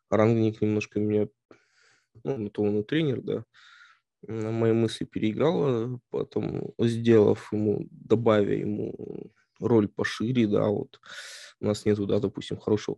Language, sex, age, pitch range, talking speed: Russian, male, 20-39, 105-130 Hz, 125 wpm